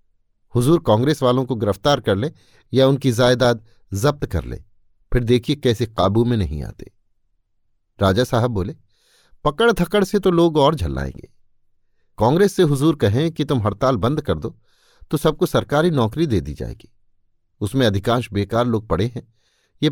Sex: male